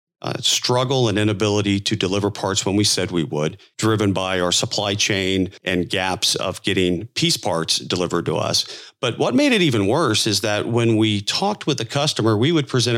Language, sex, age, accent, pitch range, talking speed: English, male, 40-59, American, 95-115 Hz, 200 wpm